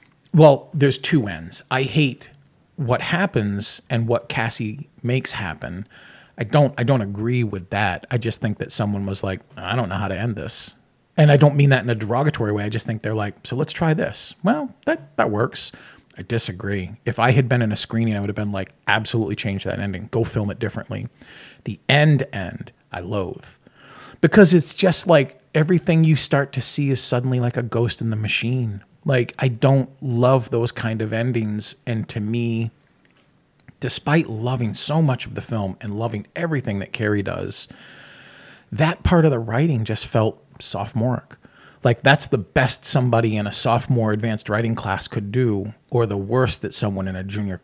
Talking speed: 195 wpm